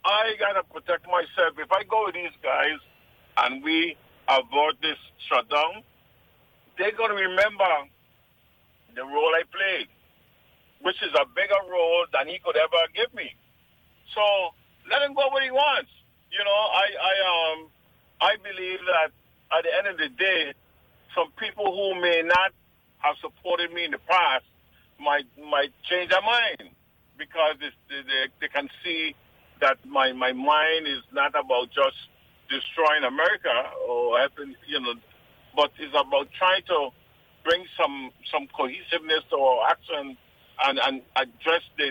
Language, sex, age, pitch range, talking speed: English, male, 50-69, 150-215 Hz, 155 wpm